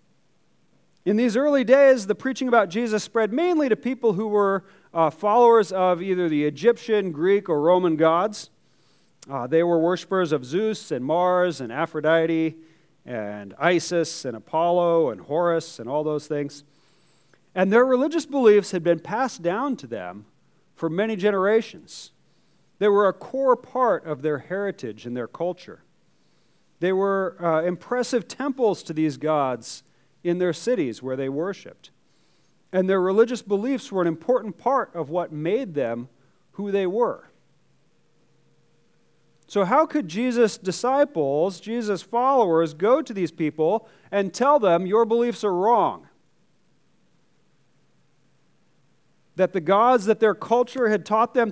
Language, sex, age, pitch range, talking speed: English, male, 40-59, 165-230 Hz, 145 wpm